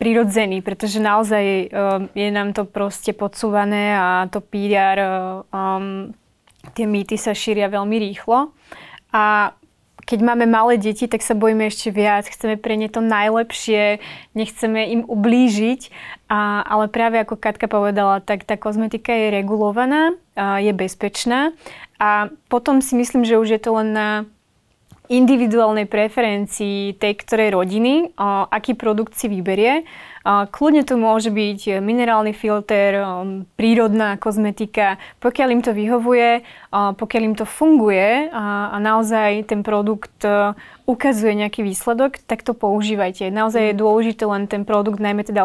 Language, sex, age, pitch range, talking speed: Slovak, female, 20-39, 205-230 Hz, 135 wpm